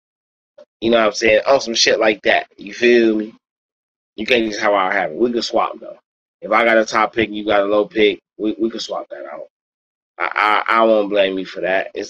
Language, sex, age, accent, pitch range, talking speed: English, male, 20-39, American, 105-130 Hz, 245 wpm